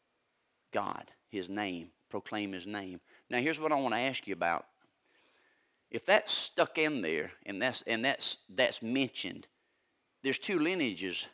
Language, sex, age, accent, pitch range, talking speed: English, male, 40-59, American, 115-155 Hz, 150 wpm